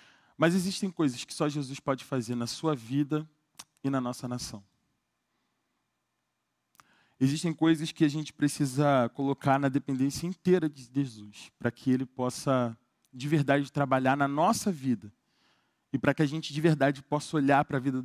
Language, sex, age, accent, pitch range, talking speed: Portuguese, male, 20-39, Brazilian, 130-165 Hz, 165 wpm